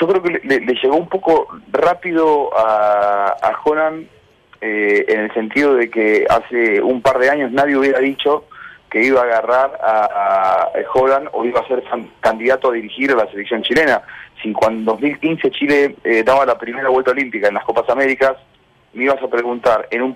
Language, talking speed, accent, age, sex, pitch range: Spanish, 190 wpm, Argentinian, 30-49, male, 115-145 Hz